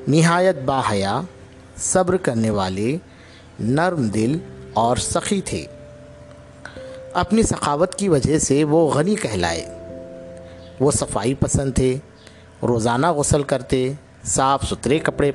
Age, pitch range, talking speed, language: 50-69, 110-160 Hz, 115 wpm, Urdu